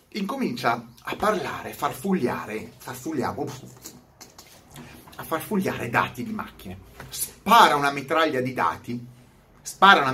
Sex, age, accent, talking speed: male, 30-49, native, 95 wpm